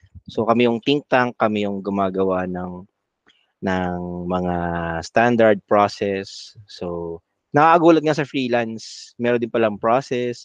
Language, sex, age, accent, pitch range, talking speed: Filipino, male, 20-39, native, 100-130 Hz, 125 wpm